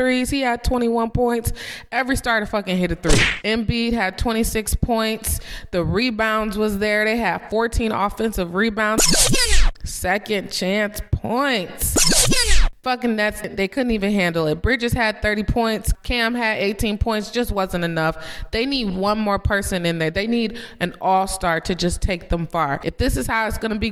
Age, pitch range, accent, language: 20-39, 170-225 Hz, American, English